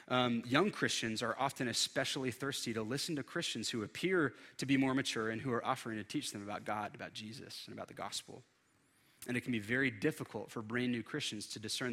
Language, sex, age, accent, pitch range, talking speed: English, male, 30-49, American, 110-135 Hz, 220 wpm